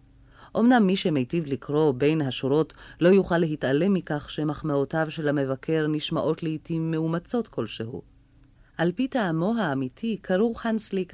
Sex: female